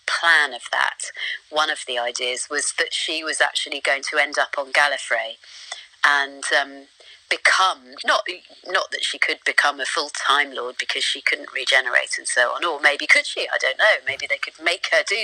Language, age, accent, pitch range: English, 30-49, British, 130-180 Hz